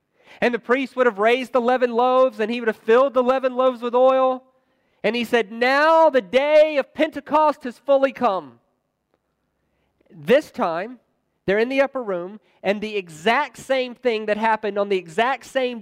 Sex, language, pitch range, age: male, English, 210-270 Hz, 30-49